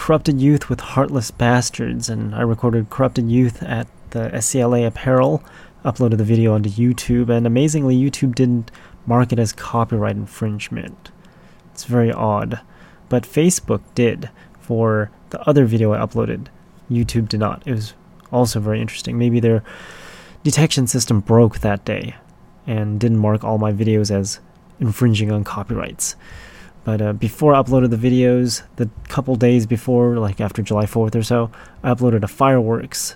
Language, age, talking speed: English, 20-39, 155 wpm